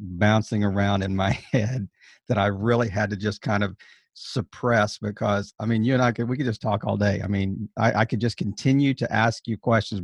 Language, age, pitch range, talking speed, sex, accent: English, 50-69, 100-115 Hz, 225 wpm, male, American